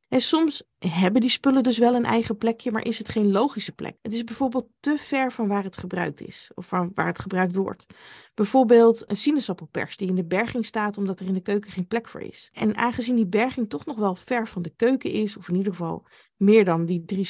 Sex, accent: female, Dutch